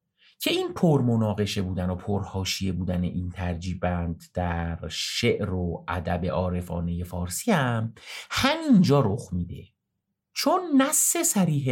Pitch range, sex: 95-150 Hz, male